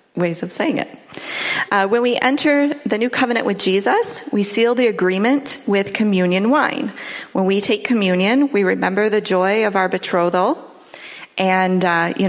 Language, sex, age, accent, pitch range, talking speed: English, female, 30-49, American, 180-240 Hz, 165 wpm